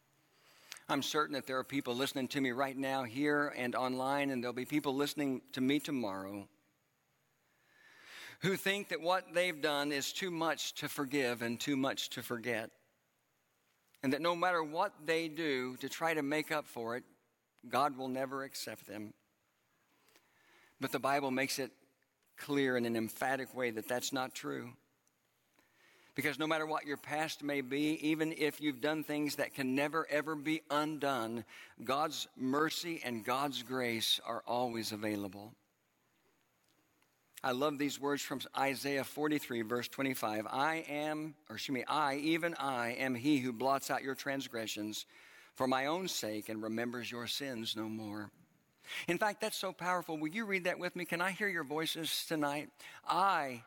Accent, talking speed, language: American, 170 wpm, English